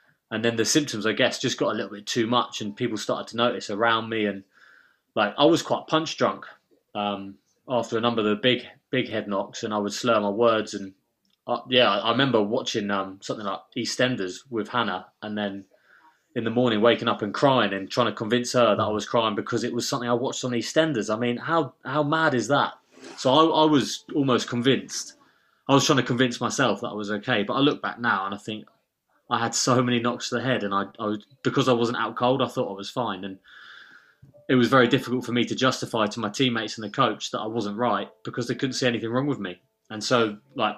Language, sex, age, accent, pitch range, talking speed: English, male, 20-39, British, 105-125 Hz, 240 wpm